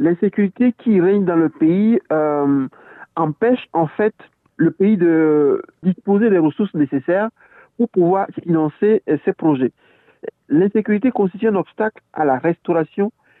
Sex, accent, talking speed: male, French, 130 wpm